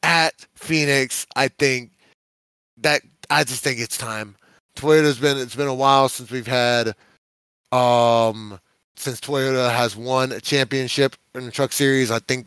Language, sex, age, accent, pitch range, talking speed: English, male, 20-39, American, 125-170 Hz, 155 wpm